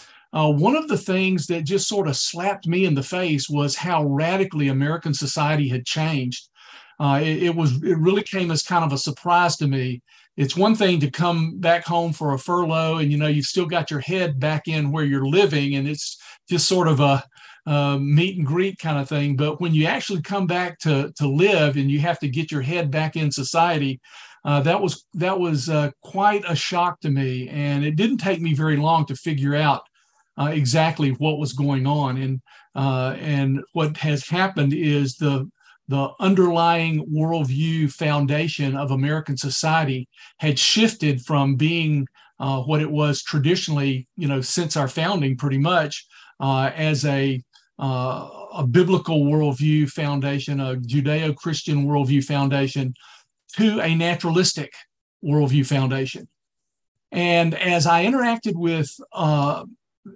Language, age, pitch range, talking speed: English, 50-69, 140-170 Hz, 170 wpm